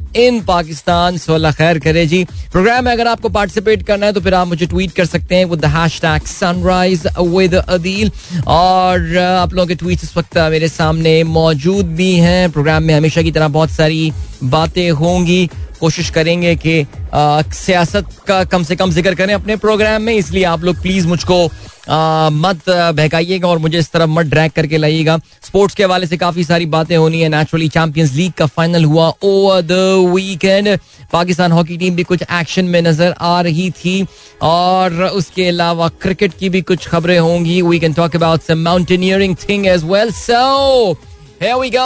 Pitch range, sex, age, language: 160-190 Hz, male, 20-39, Hindi